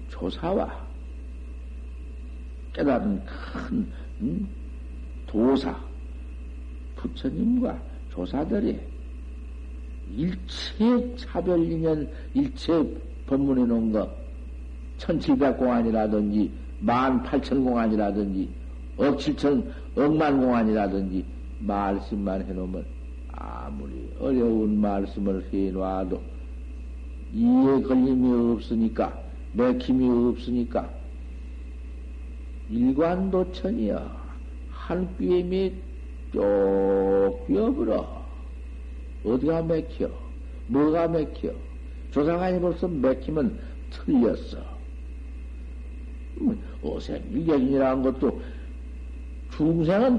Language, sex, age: Korean, male, 60-79